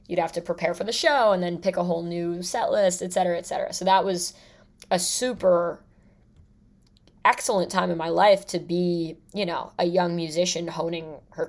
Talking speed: 200 wpm